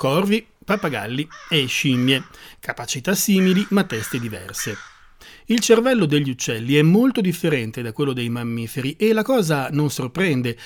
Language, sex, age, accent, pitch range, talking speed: Italian, male, 30-49, native, 130-195 Hz, 140 wpm